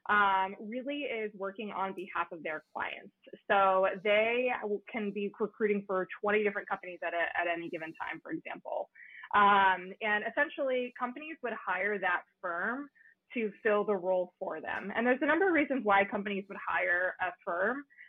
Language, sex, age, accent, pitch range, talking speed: English, female, 20-39, American, 190-235 Hz, 170 wpm